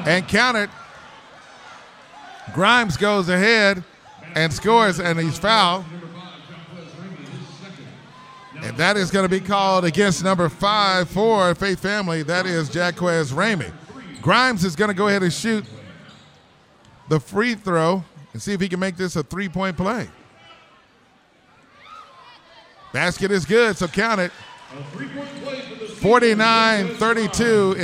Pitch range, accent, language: 165-210 Hz, American, English